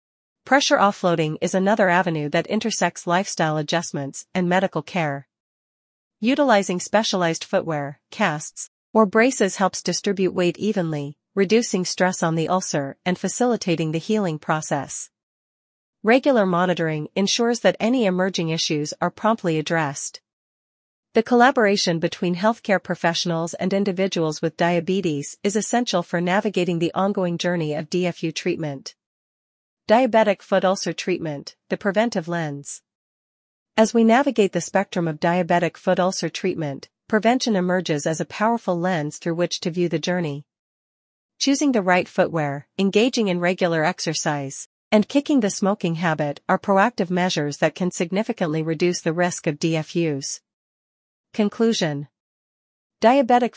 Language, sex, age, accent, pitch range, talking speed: English, female, 40-59, American, 165-205 Hz, 130 wpm